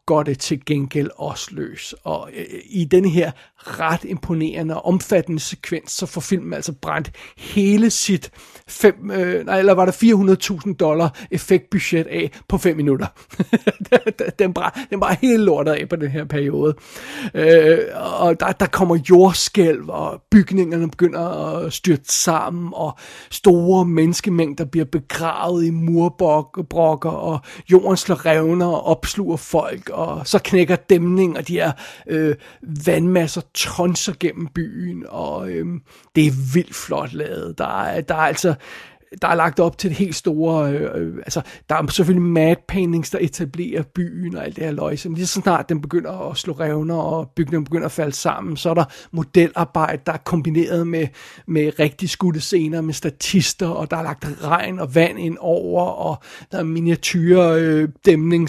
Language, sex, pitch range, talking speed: Danish, male, 160-185 Hz, 160 wpm